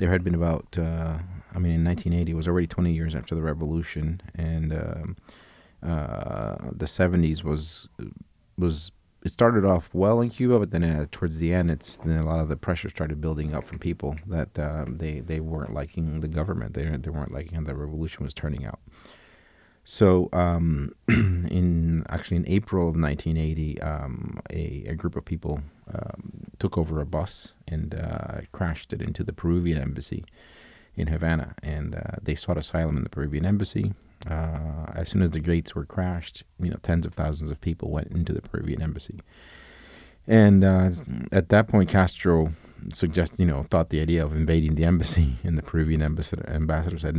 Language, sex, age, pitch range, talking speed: English, male, 30-49, 75-90 Hz, 180 wpm